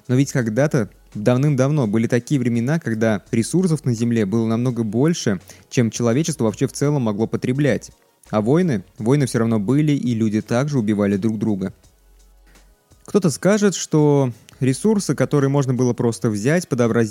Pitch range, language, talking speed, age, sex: 115-150 Hz, Russian, 150 wpm, 20-39, male